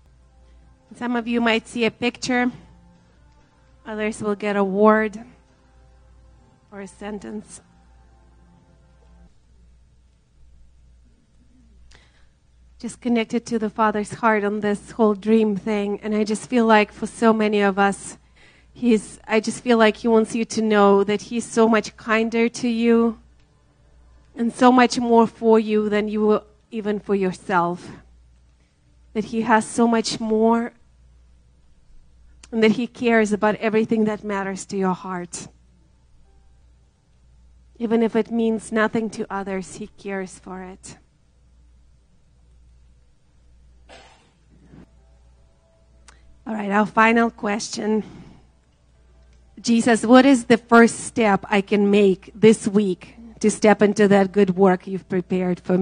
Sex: female